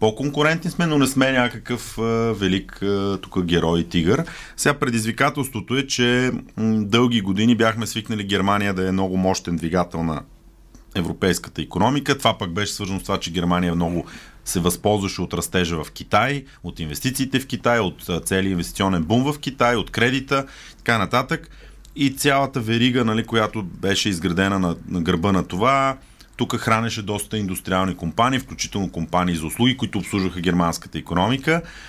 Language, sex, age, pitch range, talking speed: Bulgarian, male, 30-49, 90-125 Hz, 150 wpm